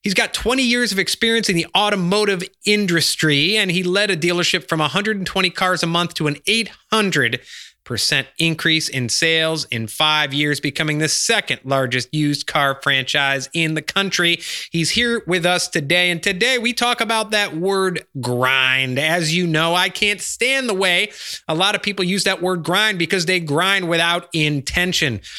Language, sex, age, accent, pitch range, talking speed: English, male, 30-49, American, 140-195 Hz, 175 wpm